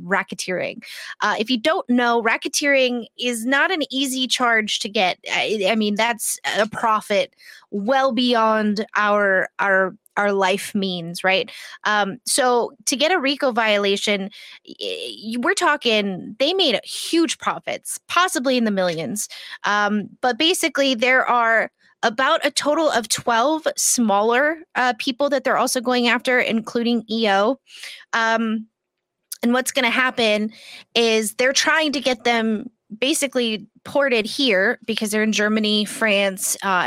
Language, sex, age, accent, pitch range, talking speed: English, female, 20-39, American, 210-265 Hz, 140 wpm